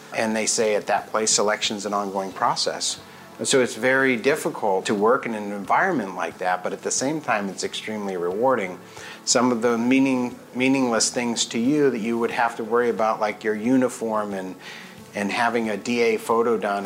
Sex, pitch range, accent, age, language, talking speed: male, 105-125 Hz, American, 50-69, English, 195 wpm